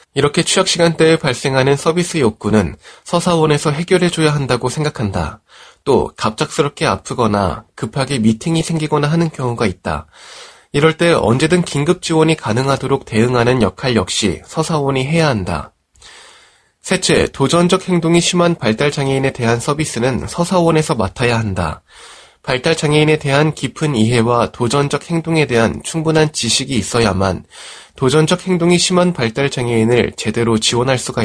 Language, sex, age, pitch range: Korean, male, 20-39, 115-160 Hz